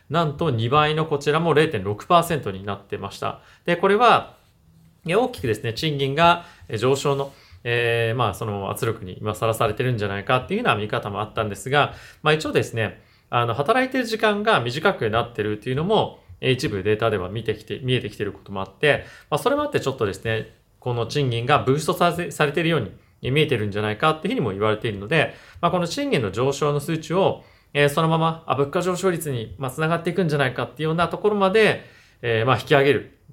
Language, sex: Japanese, male